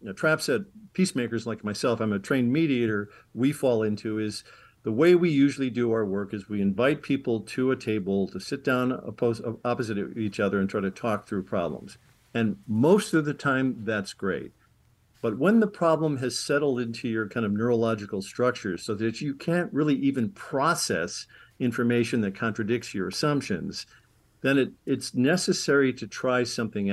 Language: English